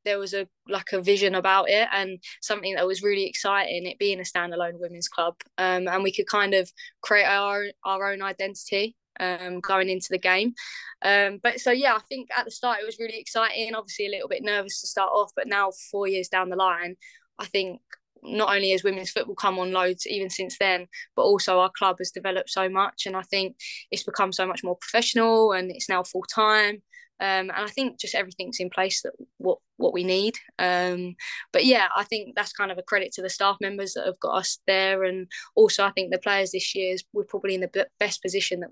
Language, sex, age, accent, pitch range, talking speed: English, female, 20-39, British, 185-205 Hz, 230 wpm